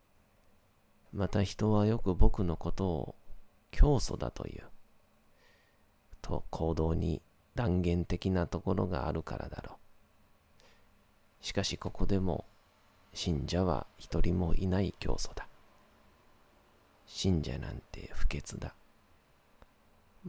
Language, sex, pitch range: Japanese, male, 80-100 Hz